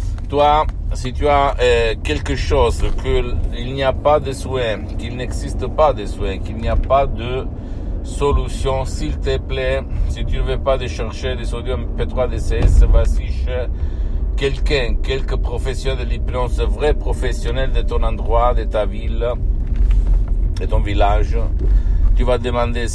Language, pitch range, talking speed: Italian, 80-110 Hz, 150 wpm